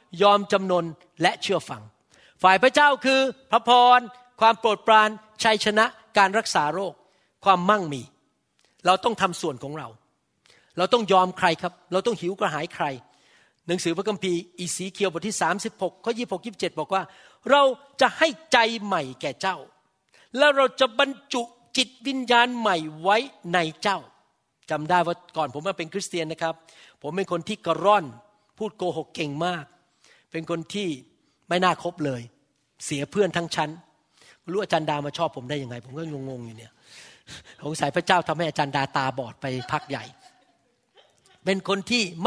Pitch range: 165-230 Hz